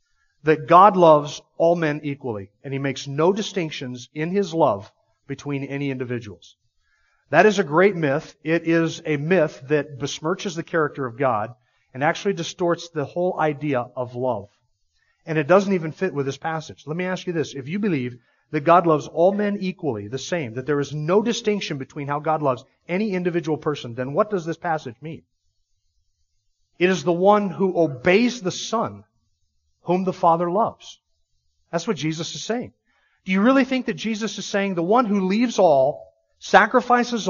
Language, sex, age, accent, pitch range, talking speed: English, male, 40-59, American, 140-205 Hz, 180 wpm